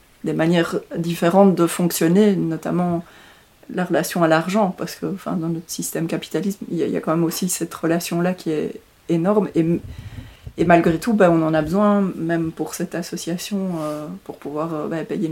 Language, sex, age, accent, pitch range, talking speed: French, female, 30-49, French, 165-190 Hz, 185 wpm